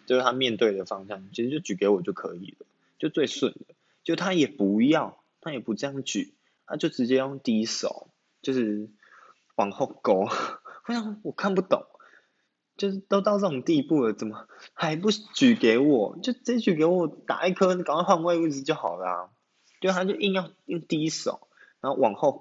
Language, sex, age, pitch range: Chinese, male, 20-39, 115-185 Hz